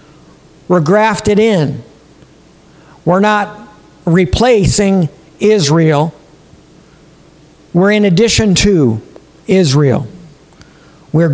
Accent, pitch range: American, 160-210 Hz